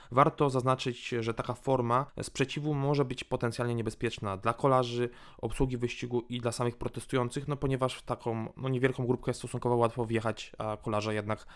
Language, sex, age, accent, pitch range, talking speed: Polish, male, 20-39, native, 110-130 Hz, 165 wpm